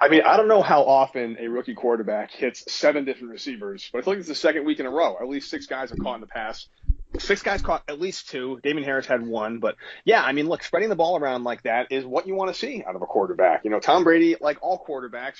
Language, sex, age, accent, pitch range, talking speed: English, male, 30-49, American, 115-150 Hz, 280 wpm